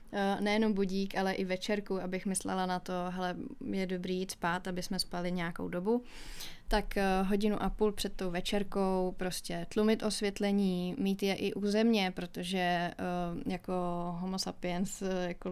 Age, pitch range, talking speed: 20-39, 180-200 Hz, 150 wpm